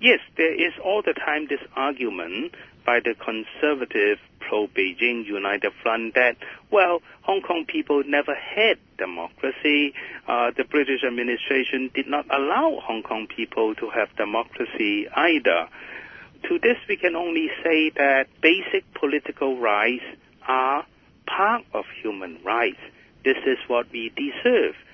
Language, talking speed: English, 135 wpm